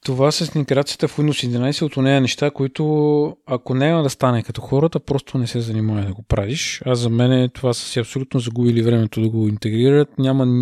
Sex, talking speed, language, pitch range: male, 210 wpm, English, 115-145 Hz